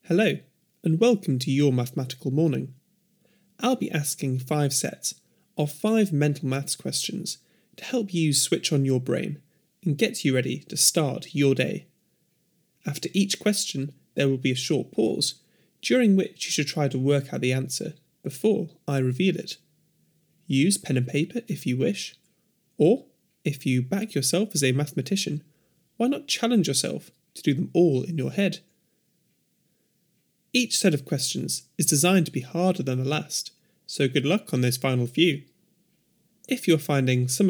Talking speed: 165 wpm